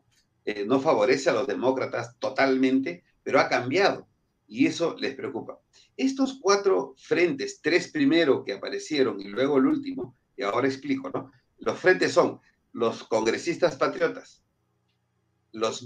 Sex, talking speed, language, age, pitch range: male, 135 wpm, Spanish, 40-59, 130-215 Hz